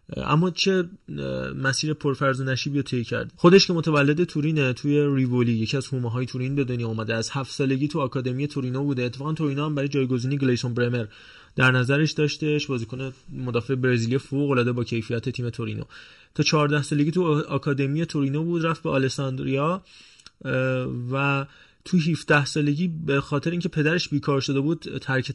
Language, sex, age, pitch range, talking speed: Persian, male, 20-39, 130-160 Hz, 170 wpm